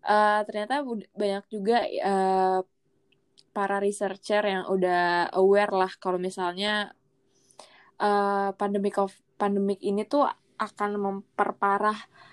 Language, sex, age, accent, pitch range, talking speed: Indonesian, female, 20-39, native, 195-220 Hz, 100 wpm